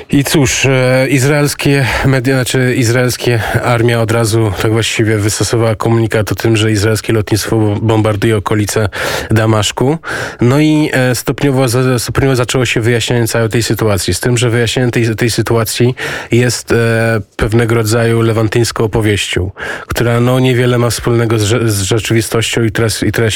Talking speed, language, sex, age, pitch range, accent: 140 wpm, Polish, male, 20-39, 110-125 Hz, native